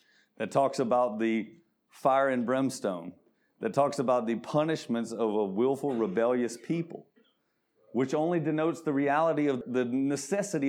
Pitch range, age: 135-175 Hz, 40-59